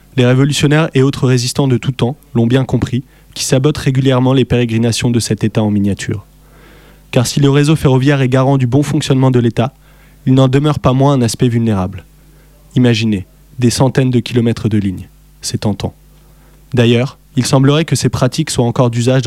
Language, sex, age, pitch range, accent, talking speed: French, male, 20-39, 120-145 Hz, French, 185 wpm